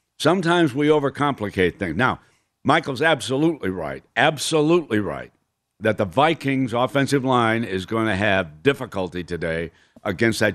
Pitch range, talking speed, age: 100-140 Hz, 130 wpm, 60-79